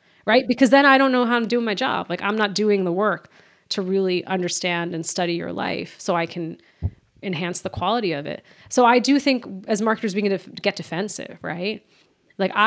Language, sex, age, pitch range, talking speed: English, female, 30-49, 185-245 Hz, 210 wpm